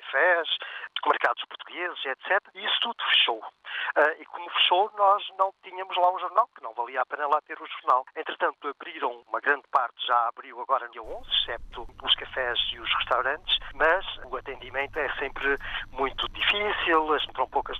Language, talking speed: Portuguese, 190 wpm